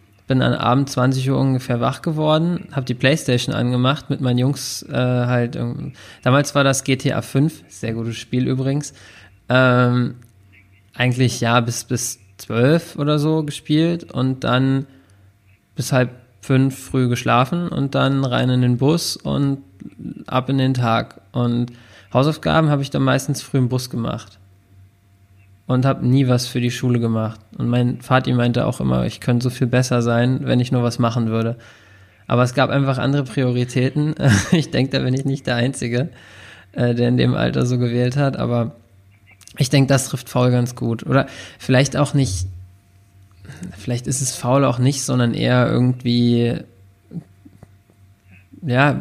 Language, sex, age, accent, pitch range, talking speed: German, male, 20-39, German, 115-135 Hz, 165 wpm